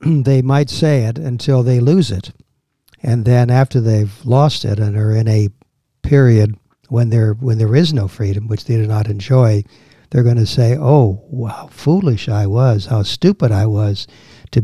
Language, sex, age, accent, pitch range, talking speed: English, male, 60-79, American, 110-140 Hz, 180 wpm